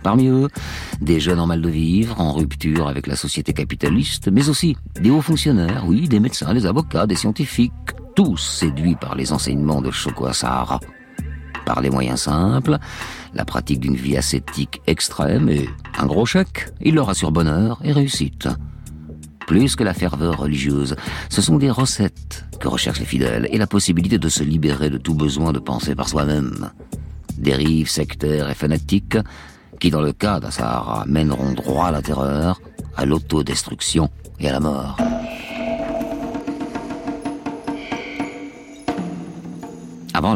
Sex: male